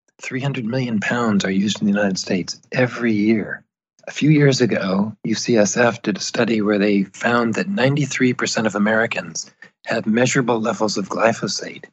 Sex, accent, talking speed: male, American, 155 wpm